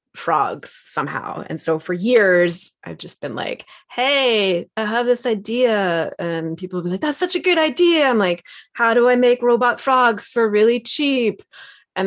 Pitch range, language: 175-225 Hz, English